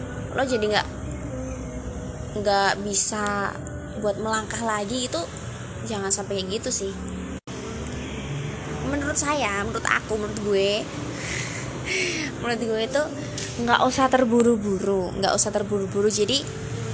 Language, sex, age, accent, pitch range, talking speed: Indonesian, female, 20-39, native, 180-230 Hz, 110 wpm